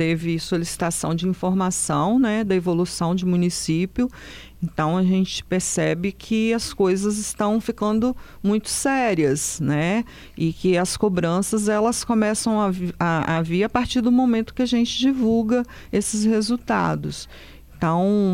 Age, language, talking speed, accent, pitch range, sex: 40-59, Portuguese, 135 wpm, Brazilian, 170-220 Hz, female